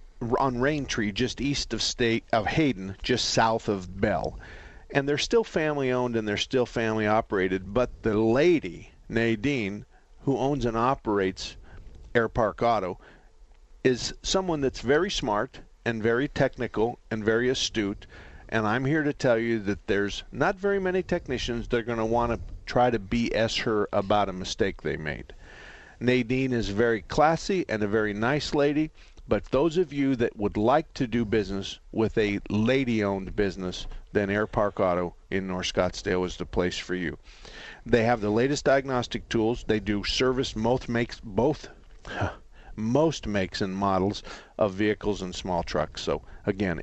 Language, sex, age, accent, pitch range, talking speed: English, male, 50-69, American, 100-125 Hz, 165 wpm